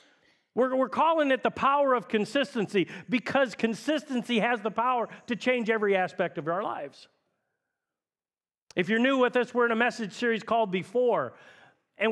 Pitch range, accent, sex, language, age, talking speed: 200-270 Hz, American, male, English, 40-59, 165 wpm